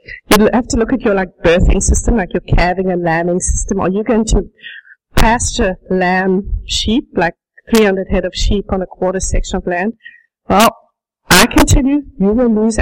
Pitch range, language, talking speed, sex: 185-235 Hz, English, 190 wpm, female